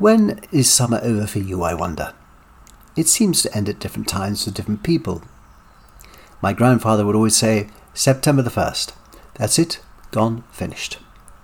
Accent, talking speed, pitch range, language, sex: British, 155 wpm, 100-125 Hz, English, male